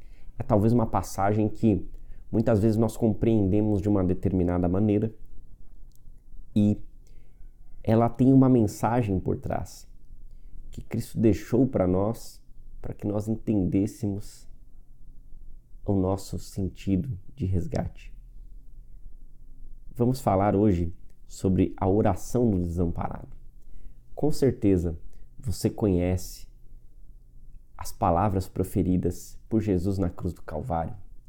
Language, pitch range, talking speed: Portuguese, 85-115 Hz, 105 wpm